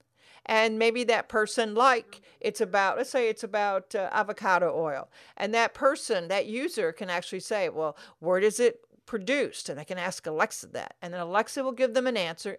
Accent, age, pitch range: American, 50-69, 180-240 Hz